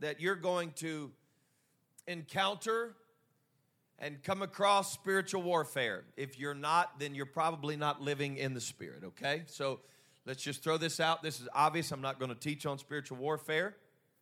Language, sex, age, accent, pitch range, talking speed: English, male, 40-59, American, 140-160 Hz, 165 wpm